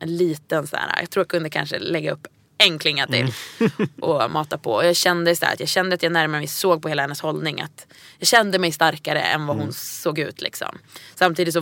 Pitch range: 155-185 Hz